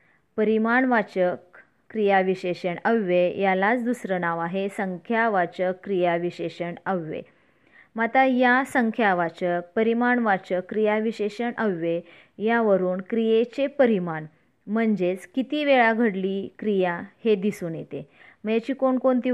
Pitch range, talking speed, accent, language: 185-230 Hz, 100 wpm, native, Marathi